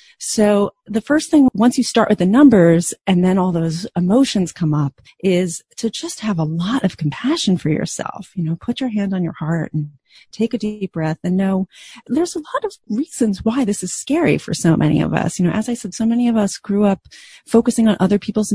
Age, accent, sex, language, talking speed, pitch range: 30-49, American, female, English, 230 wpm, 160-225 Hz